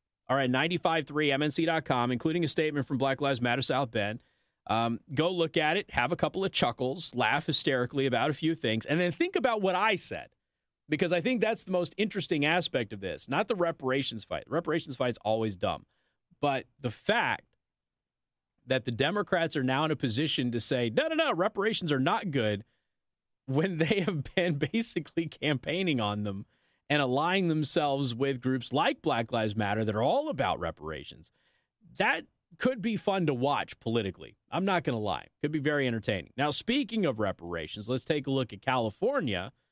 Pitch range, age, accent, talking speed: 125-170 Hz, 30-49, American, 185 wpm